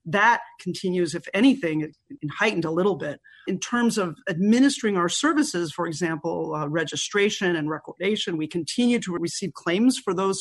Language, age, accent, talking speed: English, 40-59, American, 160 wpm